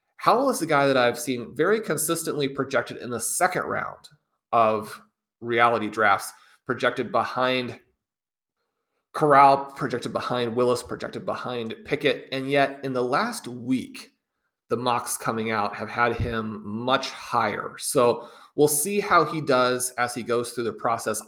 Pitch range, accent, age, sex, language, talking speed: 115-140 Hz, American, 30-49, male, English, 150 wpm